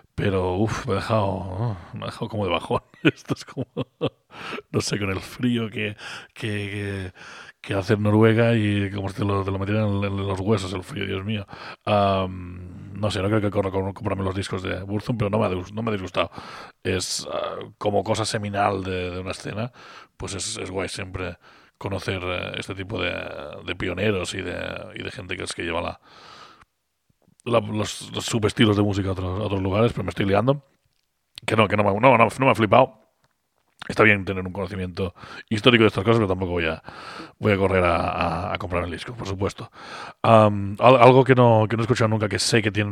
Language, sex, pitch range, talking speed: Spanish, male, 95-110 Hz, 215 wpm